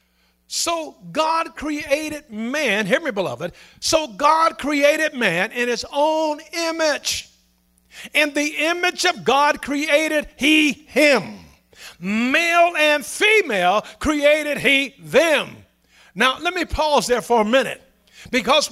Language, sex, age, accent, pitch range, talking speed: English, male, 50-69, American, 230-320 Hz, 120 wpm